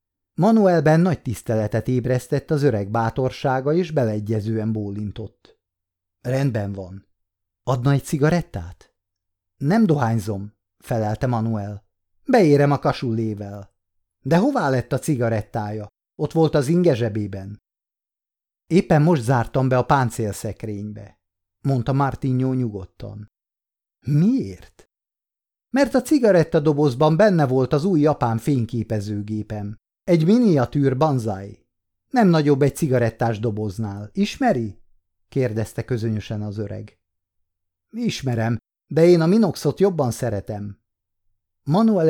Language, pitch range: Hungarian, 105-150 Hz